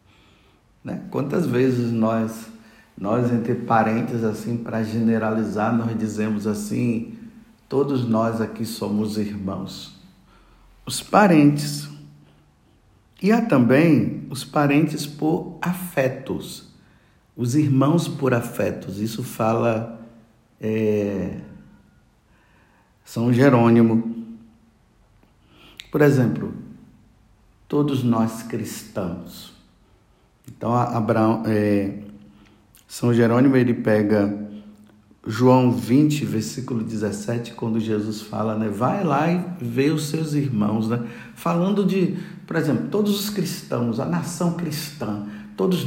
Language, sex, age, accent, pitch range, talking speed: Portuguese, male, 60-79, Brazilian, 110-150 Hz, 95 wpm